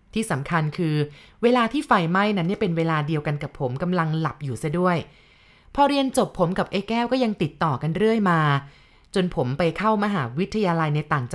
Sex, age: female, 20-39